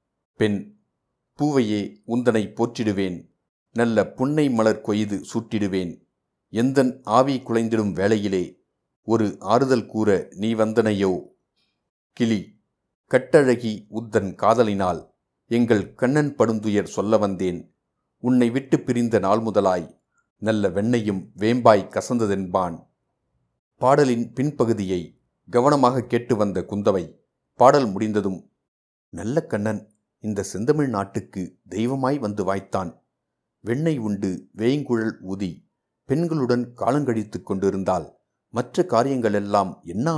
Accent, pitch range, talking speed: native, 100-125 Hz, 95 wpm